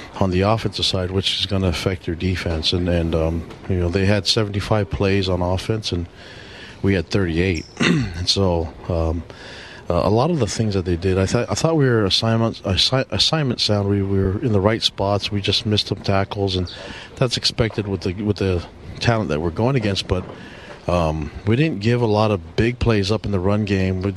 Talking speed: 215 wpm